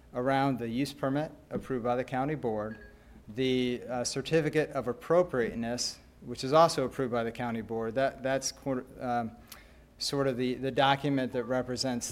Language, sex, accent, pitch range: English, male, American, 115-135 Hz